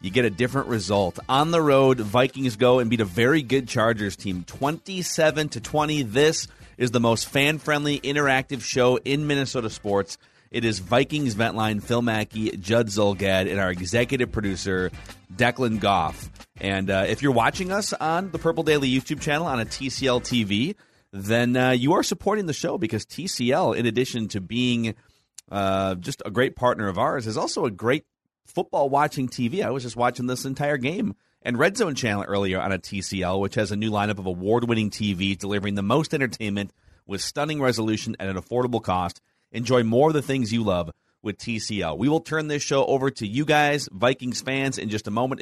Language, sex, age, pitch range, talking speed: English, male, 30-49, 105-140 Hz, 195 wpm